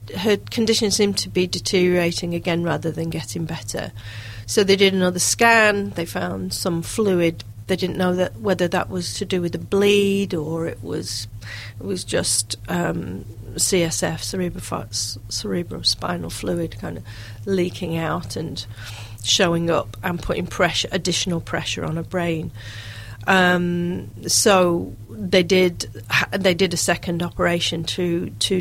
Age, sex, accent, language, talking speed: 40-59, female, British, English, 145 wpm